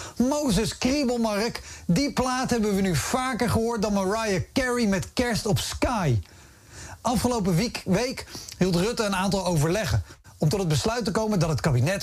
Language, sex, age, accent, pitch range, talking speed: Dutch, male, 40-59, Dutch, 145-215 Hz, 165 wpm